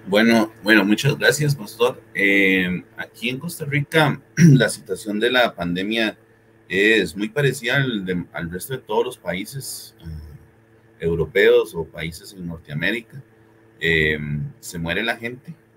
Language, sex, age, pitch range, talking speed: English, male, 40-59, 95-130 Hz, 140 wpm